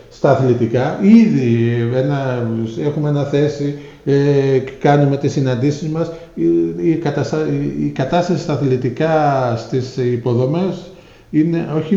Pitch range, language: 130-170 Hz, Greek